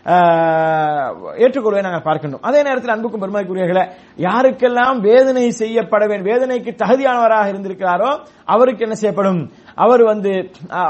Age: 30-49